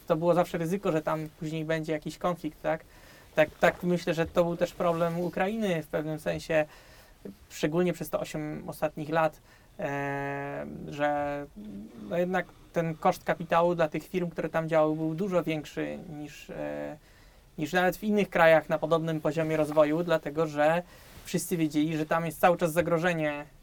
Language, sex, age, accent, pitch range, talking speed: Polish, male, 20-39, native, 155-175 Hz, 170 wpm